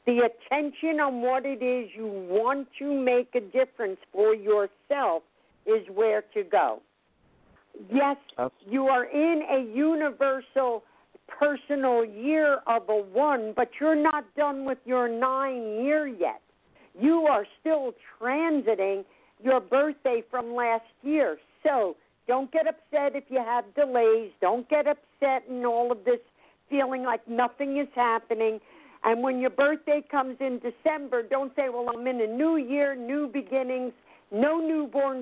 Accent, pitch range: American, 230-280 Hz